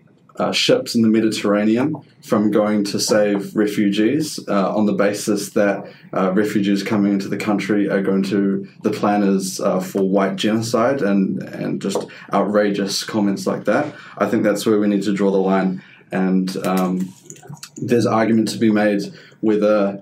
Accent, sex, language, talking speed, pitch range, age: Australian, male, English, 160 wpm, 100-110 Hz, 20-39